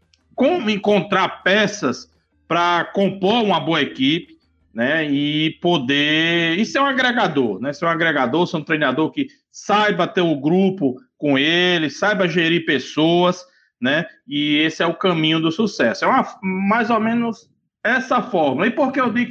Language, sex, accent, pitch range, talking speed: Portuguese, male, Brazilian, 175-230 Hz, 160 wpm